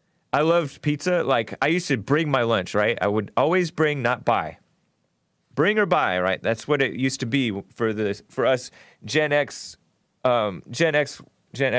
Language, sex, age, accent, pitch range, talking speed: English, male, 30-49, American, 105-135 Hz, 190 wpm